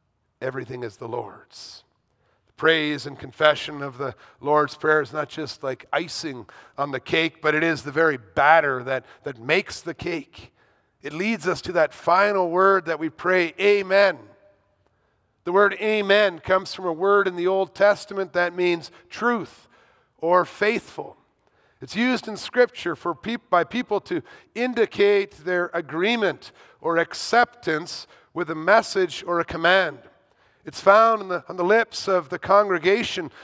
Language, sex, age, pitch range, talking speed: English, male, 50-69, 160-205 Hz, 155 wpm